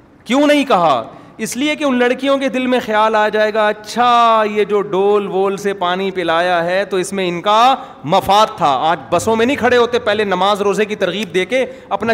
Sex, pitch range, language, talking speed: male, 135-215 Hz, Urdu, 220 wpm